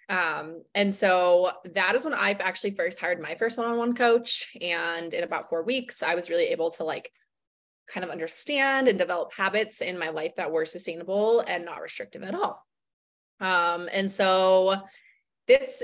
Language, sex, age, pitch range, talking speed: English, female, 20-39, 175-235 Hz, 180 wpm